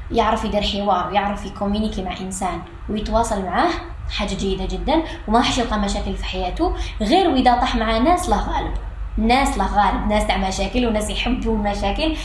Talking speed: 160 wpm